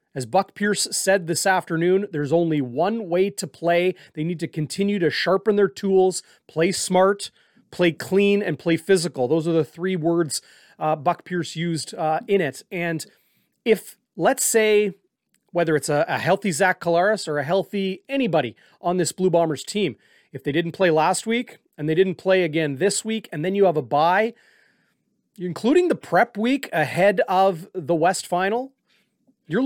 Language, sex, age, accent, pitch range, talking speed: English, male, 30-49, American, 160-200 Hz, 180 wpm